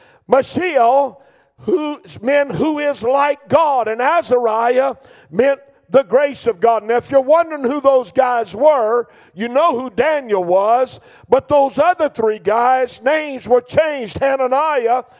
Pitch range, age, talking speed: 245-300 Hz, 50-69, 140 wpm